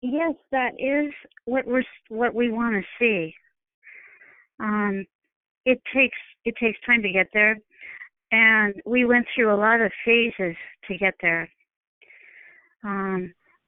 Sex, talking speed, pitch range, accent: female, 135 wpm, 190-245 Hz, American